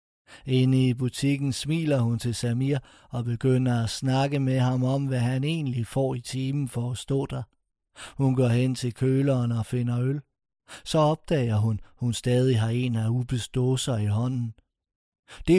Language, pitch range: Danish, 120-140 Hz